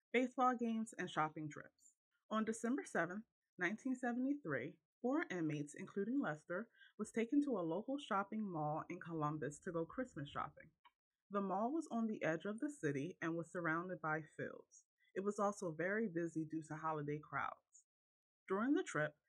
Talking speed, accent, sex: 160 wpm, American, female